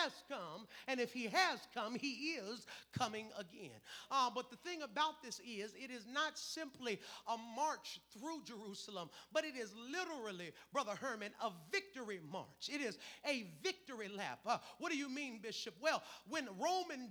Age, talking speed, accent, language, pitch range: 40-59, 170 wpm, American, English, 230-320 Hz